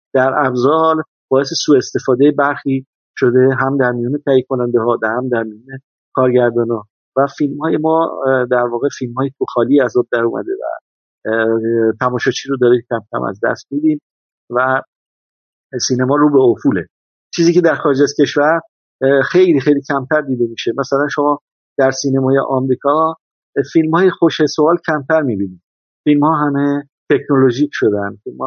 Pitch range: 125-155 Hz